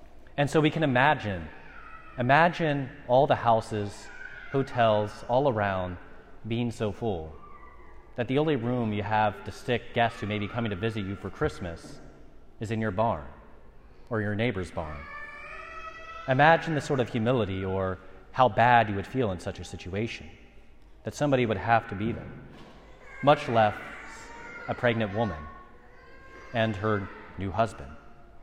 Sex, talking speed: male, 150 wpm